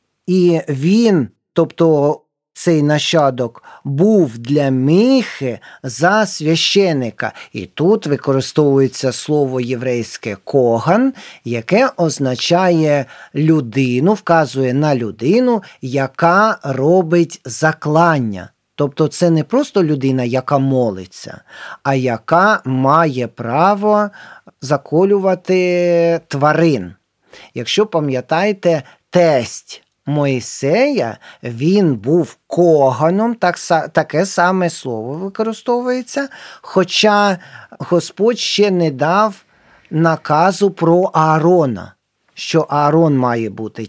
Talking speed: 85 wpm